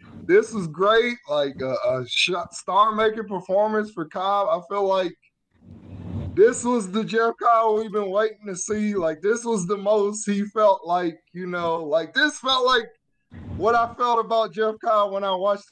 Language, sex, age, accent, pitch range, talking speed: English, male, 20-39, American, 175-240 Hz, 175 wpm